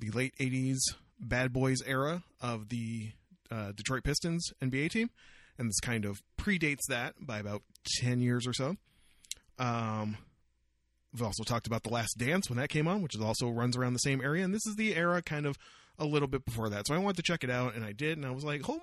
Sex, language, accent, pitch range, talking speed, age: male, English, American, 115-155 Hz, 230 wpm, 30-49